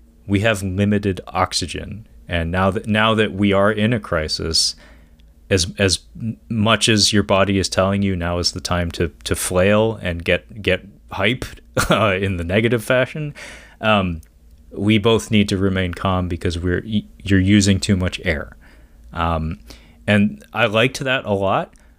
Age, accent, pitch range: 30-49, American, 85-105 Hz